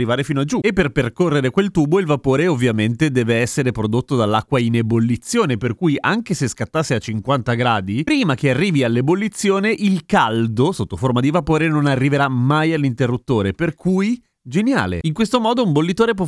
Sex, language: male, Italian